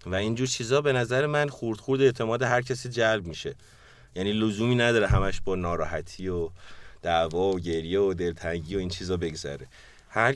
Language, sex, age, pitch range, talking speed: Persian, male, 30-49, 90-125 Hz, 175 wpm